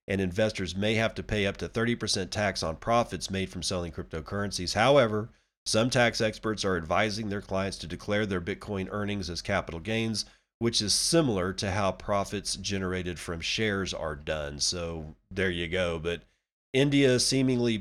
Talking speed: 170 wpm